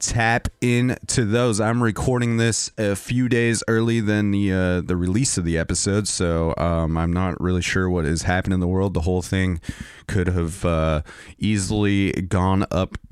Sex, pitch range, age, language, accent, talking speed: male, 85-105 Hz, 30-49, English, American, 175 wpm